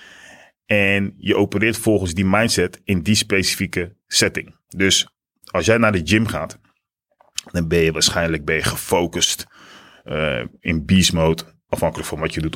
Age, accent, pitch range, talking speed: 30-49, Dutch, 85-100 Hz, 160 wpm